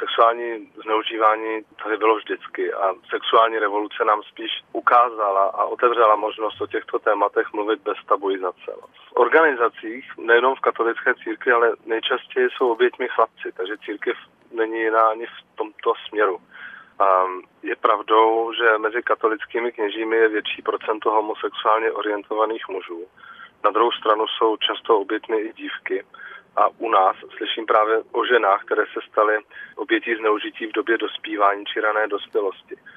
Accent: native